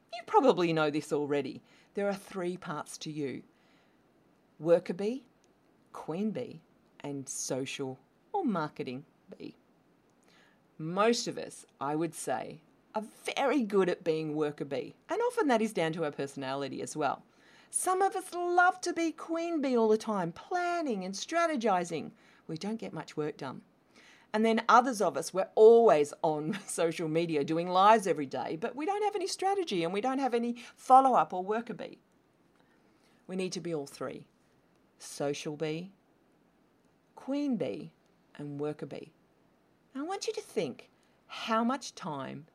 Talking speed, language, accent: 160 wpm, English, Australian